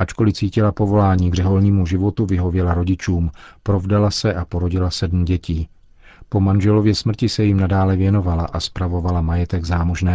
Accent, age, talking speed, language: native, 40-59, 140 wpm, Czech